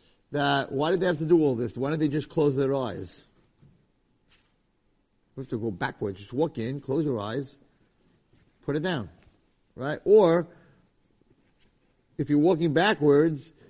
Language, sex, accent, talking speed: English, male, American, 160 wpm